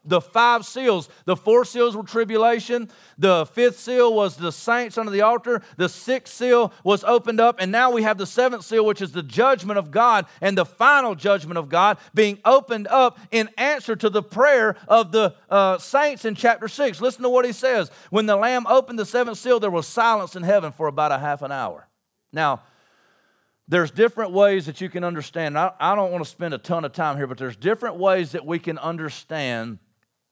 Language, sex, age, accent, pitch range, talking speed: English, male, 40-59, American, 165-225 Hz, 210 wpm